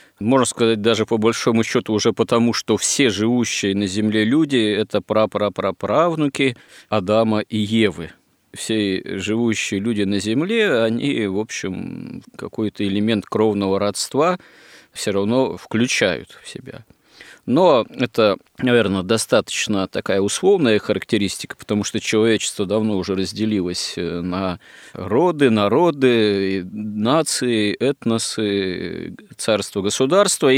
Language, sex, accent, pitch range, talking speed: Russian, male, native, 100-120 Hz, 110 wpm